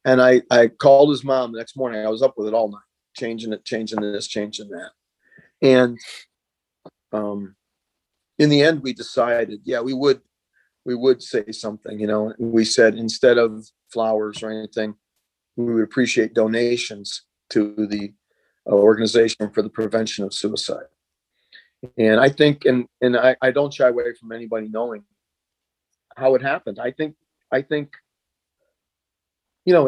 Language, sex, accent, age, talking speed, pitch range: English, male, American, 40-59, 160 wpm, 110-130 Hz